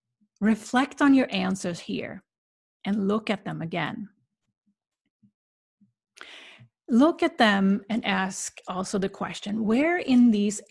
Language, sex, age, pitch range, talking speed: English, female, 30-49, 185-225 Hz, 120 wpm